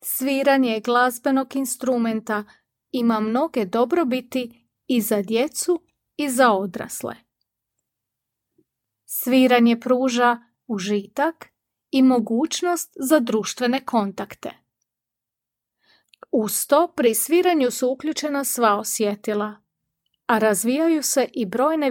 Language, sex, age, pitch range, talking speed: Croatian, female, 30-49, 220-275 Hz, 90 wpm